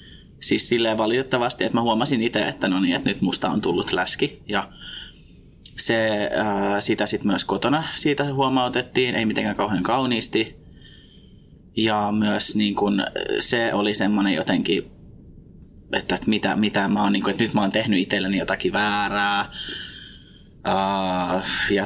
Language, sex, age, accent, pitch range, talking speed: Finnish, male, 20-39, native, 100-115 Hz, 150 wpm